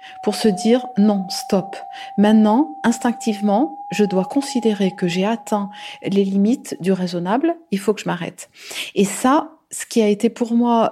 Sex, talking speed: female, 165 wpm